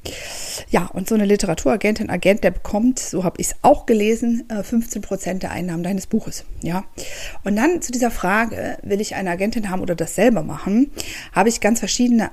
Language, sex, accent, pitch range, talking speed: German, female, German, 180-225 Hz, 190 wpm